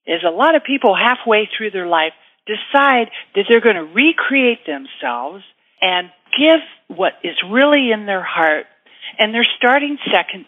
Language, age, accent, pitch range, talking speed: English, 60-79, American, 175-255 Hz, 160 wpm